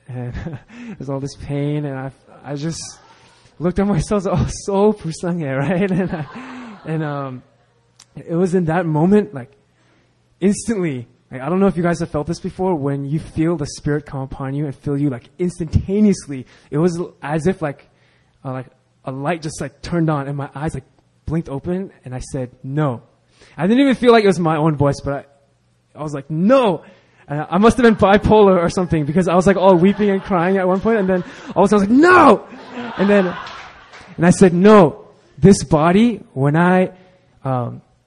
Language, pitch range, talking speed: English, 140-190 Hz, 205 wpm